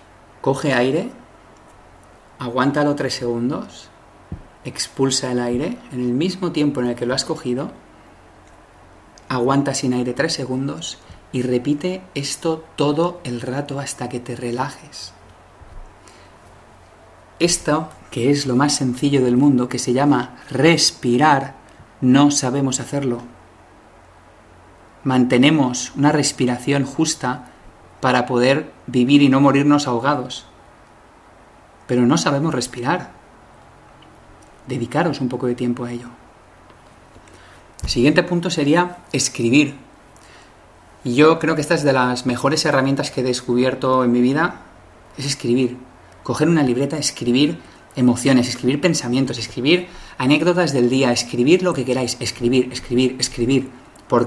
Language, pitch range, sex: Spanish, 120-145 Hz, male